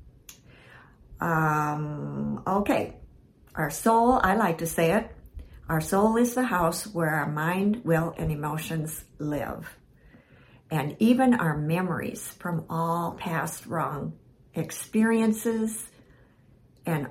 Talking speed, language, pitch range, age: 110 wpm, English, 160-205 Hz, 60-79